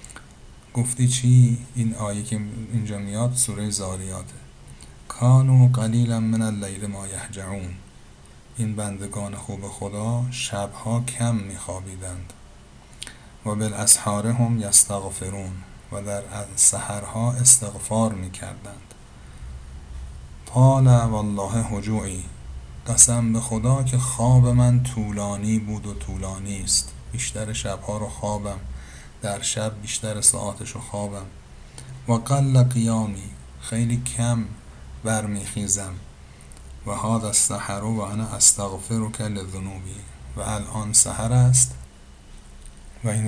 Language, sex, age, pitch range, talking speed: Persian, male, 50-69, 95-115 Hz, 110 wpm